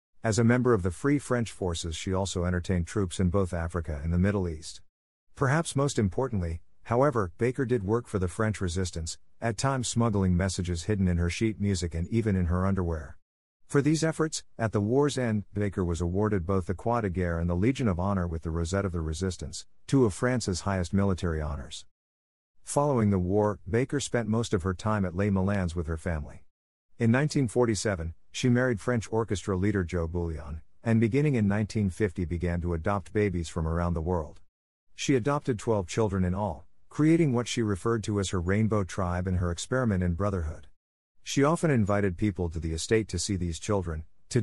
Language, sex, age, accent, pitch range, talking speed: English, male, 50-69, American, 85-115 Hz, 195 wpm